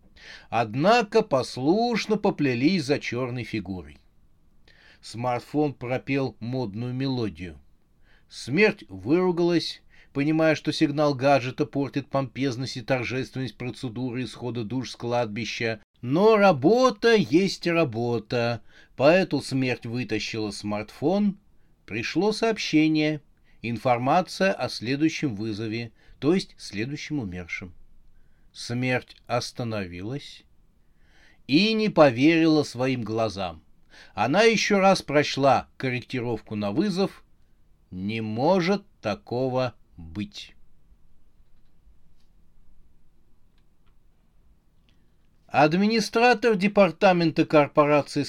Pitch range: 110-160 Hz